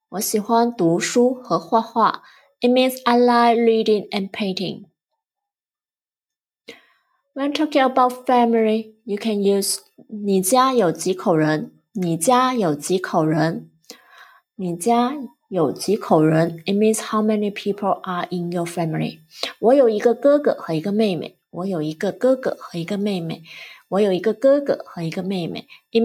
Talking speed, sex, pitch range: 65 wpm, female, 190-250 Hz